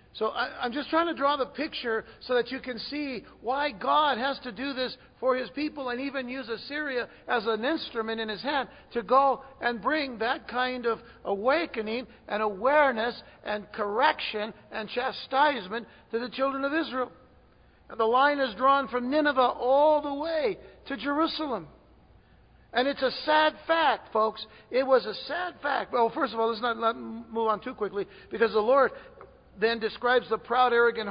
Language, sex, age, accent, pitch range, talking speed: English, male, 60-79, American, 220-270 Hz, 175 wpm